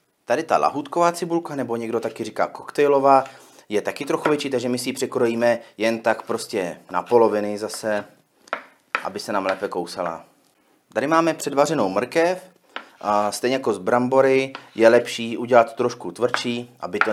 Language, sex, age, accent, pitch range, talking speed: Czech, male, 30-49, native, 115-140 Hz, 160 wpm